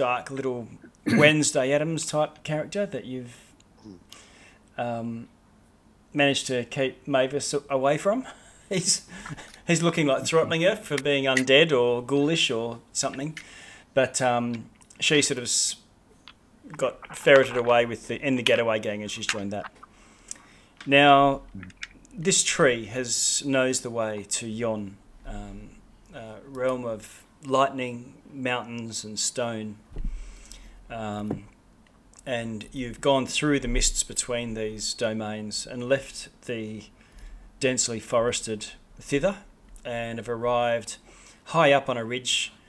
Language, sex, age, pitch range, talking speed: English, male, 30-49, 110-140 Hz, 120 wpm